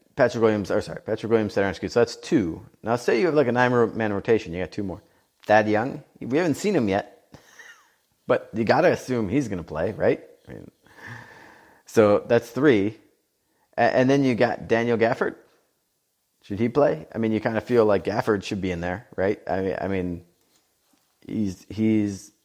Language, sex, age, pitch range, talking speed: English, male, 30-49, 100-125 Hz, 185 wpm